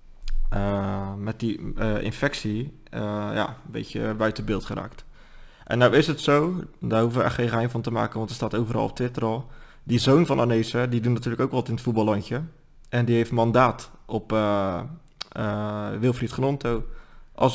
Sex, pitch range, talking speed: male, 110-130 Hz, 190 wpm